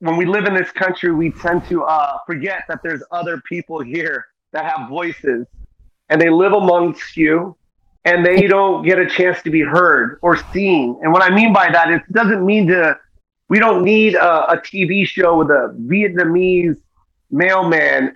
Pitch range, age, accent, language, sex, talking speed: 170-215 Hz, 30-49, American, English, male, 185 wpm